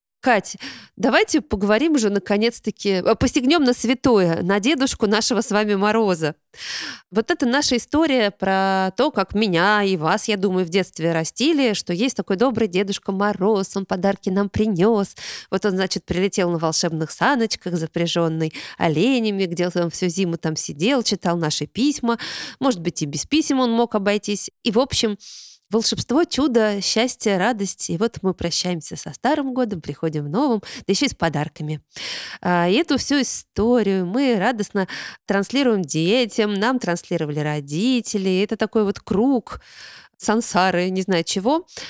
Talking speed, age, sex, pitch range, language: 150 wpm, 20-39, female, 180-235 Hz, Russian